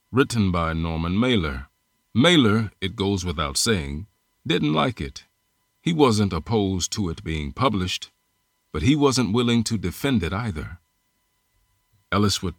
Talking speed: 140 wpm